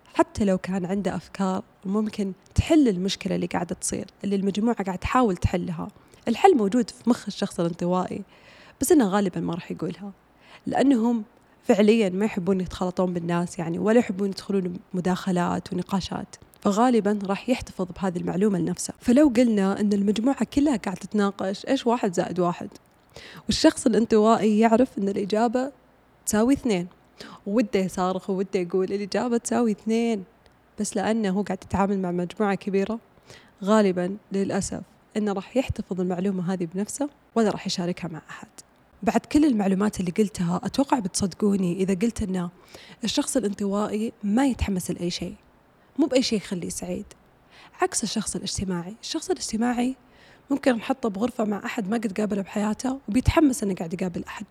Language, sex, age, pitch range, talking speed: Arabic, female, 20-39, 190-235 Hz, 145 wpm